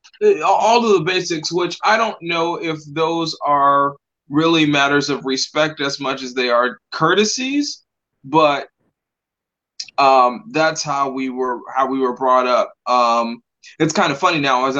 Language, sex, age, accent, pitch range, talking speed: English, male, 20-39, American, 130-150 Hz, 160 wpm